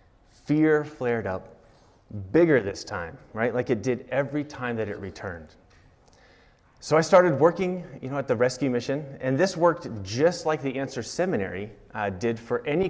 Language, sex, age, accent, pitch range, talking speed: English, male, 30-49, American, 110-155 Hz, 170 wpm